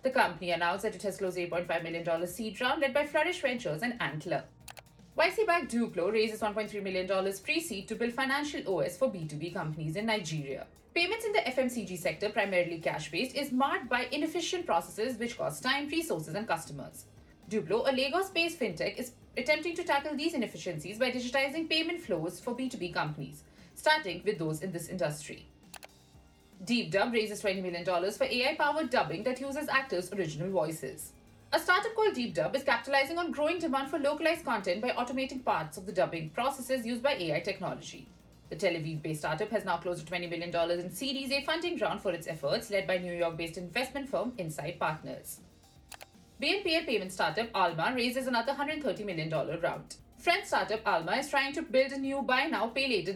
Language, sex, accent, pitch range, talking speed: English, female, Indian, 180-280 Hz, 175 wpm